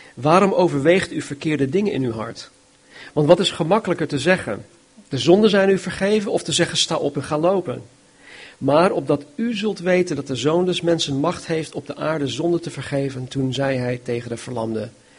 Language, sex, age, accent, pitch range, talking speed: Dutch, male, 40-59, Dutch, 125-165 Hz, 200 wpm